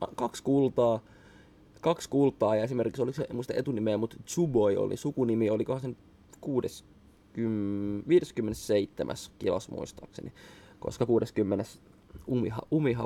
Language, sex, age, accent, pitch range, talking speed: Finnish, male, 20-39, native, 105-135 Hz, 110 wpm